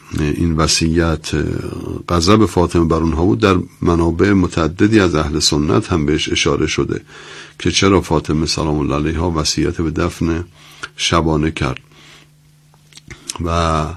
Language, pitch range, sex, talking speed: Persian, 80-95 Hz, male, 125 wpm